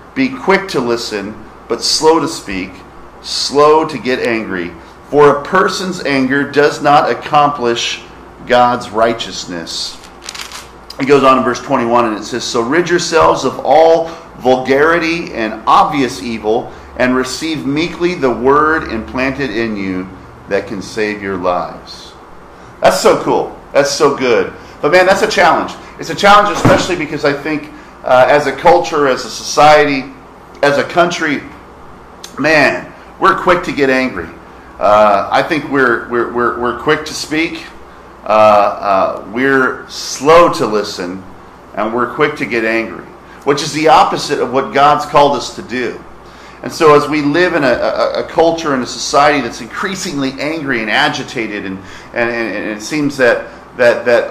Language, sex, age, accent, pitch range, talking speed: English, male, 40-59, American, 115-155 Hz, 160 wpm